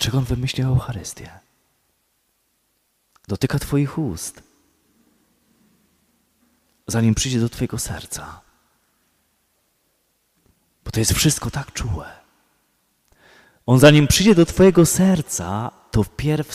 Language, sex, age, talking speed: Polish, male, 30-49, 95 wpm